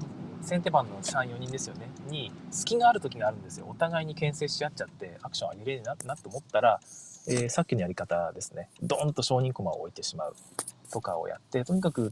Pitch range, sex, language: 125-175 Hz, male, Japanese